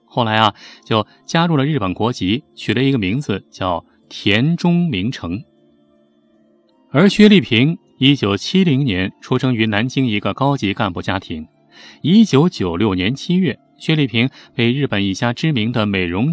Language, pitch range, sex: Chinese, 100-145 Hz, male